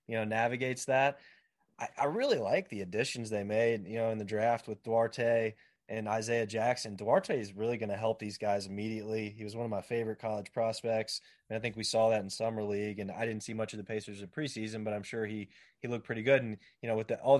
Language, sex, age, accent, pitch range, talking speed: English, male, 20-39, American, 110-130 Hz, 250 wpm